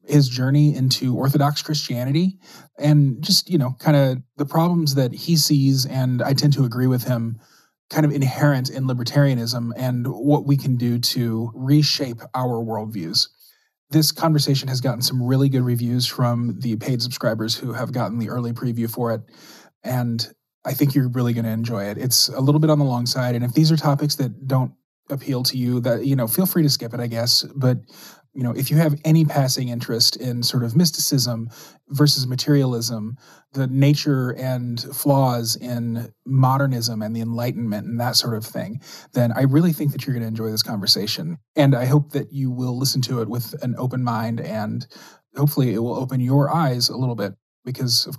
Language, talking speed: English, 200 wpm